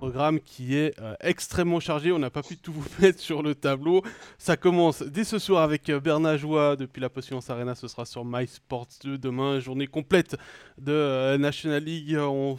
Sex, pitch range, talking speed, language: male, 130-155 Hz, 200 wpm, French